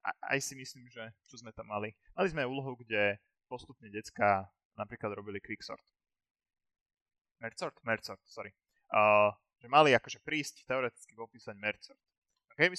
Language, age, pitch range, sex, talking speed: Slovak, 20-39, 105-140 Hz, male, 125 wpm